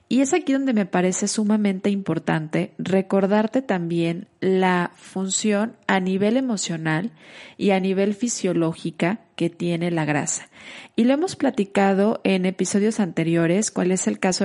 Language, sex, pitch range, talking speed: Spanish, female, 175-210 Hz, 140 wpm